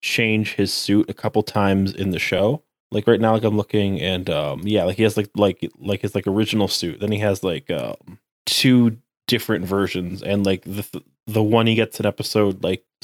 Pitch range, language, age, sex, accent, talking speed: 95-110 Hz, English, 20-39, male, American, 215 wpm